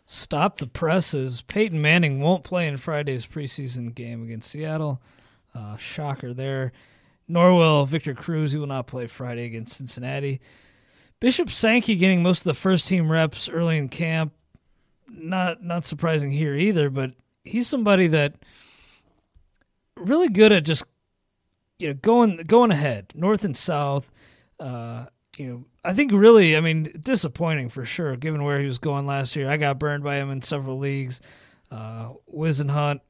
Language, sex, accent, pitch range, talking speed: English, male, American, 130-170 Hz, 160 wpm